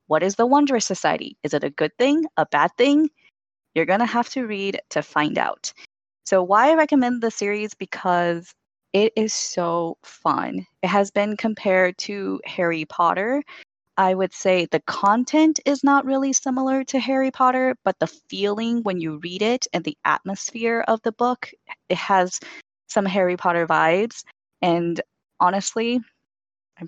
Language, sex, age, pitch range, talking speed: English, female, 20-39, 175-240 Hz, 165 wpm